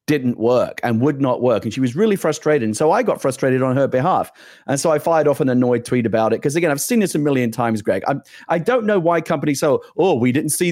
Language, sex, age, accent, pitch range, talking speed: English, male, 40-59, British, 130-170 Hz, 280 wpm